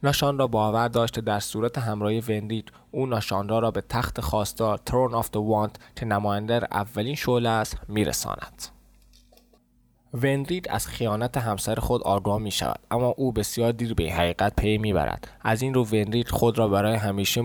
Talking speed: 165 wpm